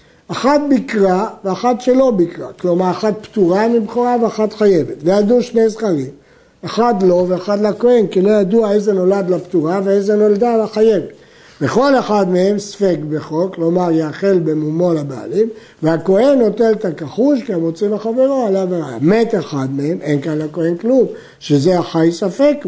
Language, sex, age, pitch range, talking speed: Hebrew, male, 60-79, 170-230 Hz, 150 wpm